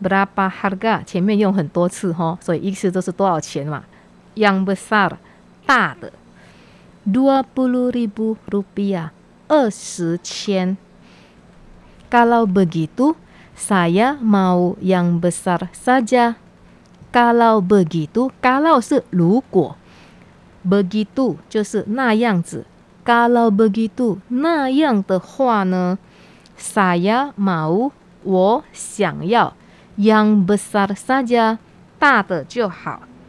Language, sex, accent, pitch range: Chinese, female, Malaysian, 185-235 Hz